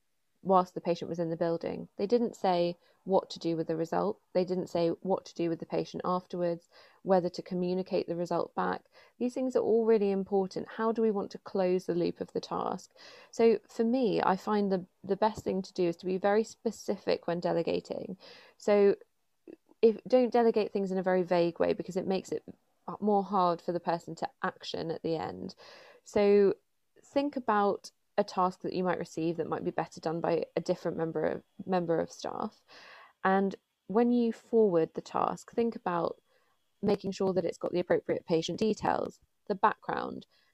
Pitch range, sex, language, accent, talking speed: 170-210 Hz, female, English, British, 195 wpm